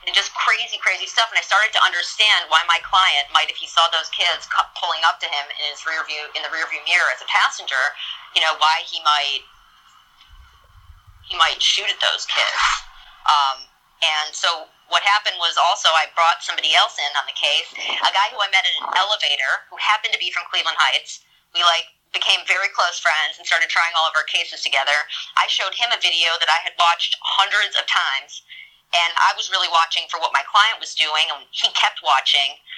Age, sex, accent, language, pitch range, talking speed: 30-49, female, American, English, 155-180 Hz, 210 wpm